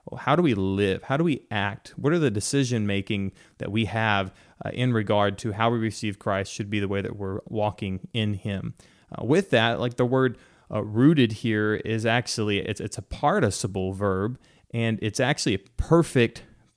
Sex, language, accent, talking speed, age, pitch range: male, English, American, 190 wpm, 30-49, 105-125 Hz